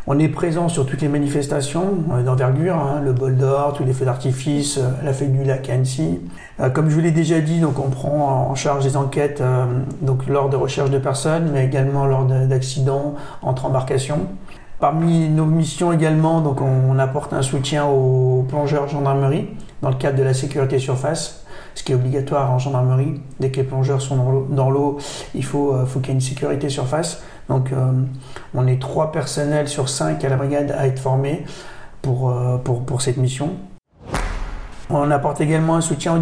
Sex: male